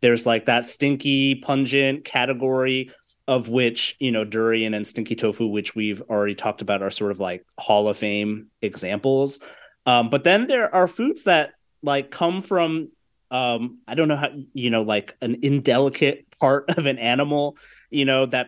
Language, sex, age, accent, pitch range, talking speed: English, male, 30-49, American, 115-140 Hz, 175 wpm